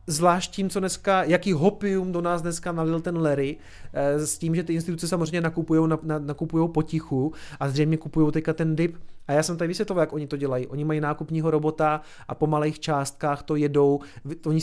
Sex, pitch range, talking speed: male, 145-170 Hz, 190 wpm